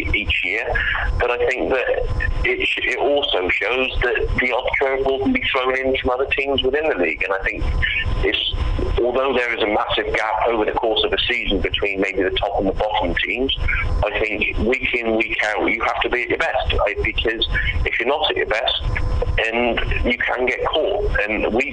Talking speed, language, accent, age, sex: 200 wpm, English, British, 30-49, male